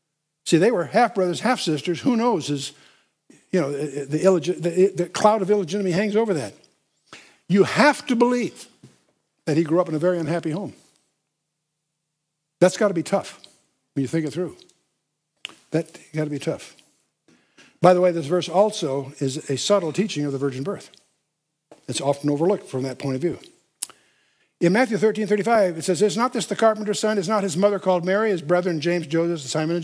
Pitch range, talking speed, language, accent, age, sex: 155-205 Hz, 190 wpm, English, American, 60-79, male